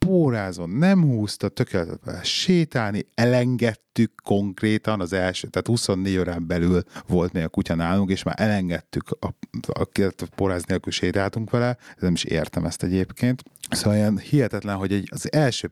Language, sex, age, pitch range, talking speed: Hungarian, male, 30-49, 85-110 Hz, 155 wpm